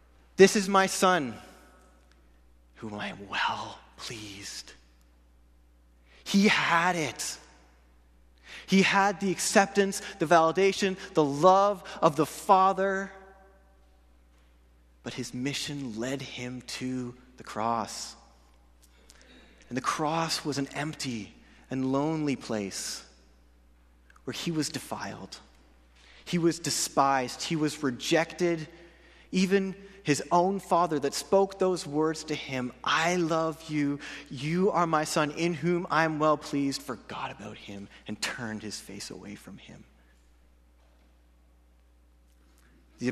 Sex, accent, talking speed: male, American, 115 wpm